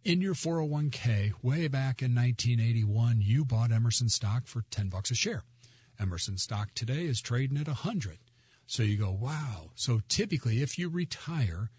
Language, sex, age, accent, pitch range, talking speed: English, male, 50-69, American, 105-130 Hz, 165 wpm